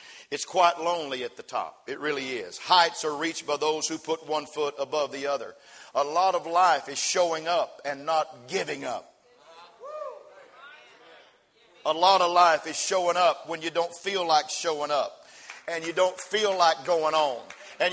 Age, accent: 50-69, American